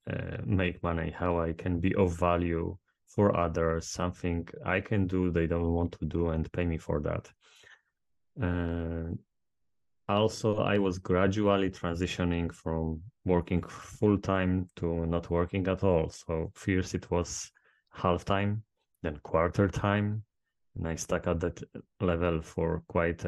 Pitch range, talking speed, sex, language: 85-95 Hz, 145 wpm, male, English